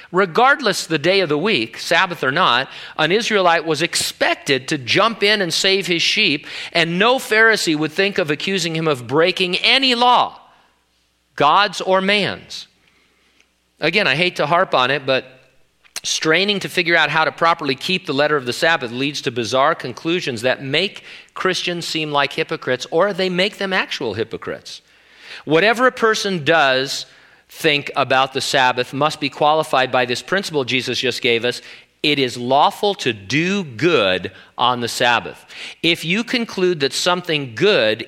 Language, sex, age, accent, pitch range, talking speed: English, male, 40-59, American, 130-185 Hz, 165 wpm